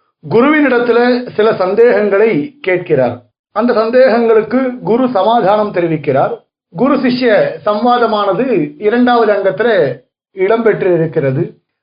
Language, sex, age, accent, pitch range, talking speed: Tamil, male, 50-69, native, 180-245 Hz, 85 wpm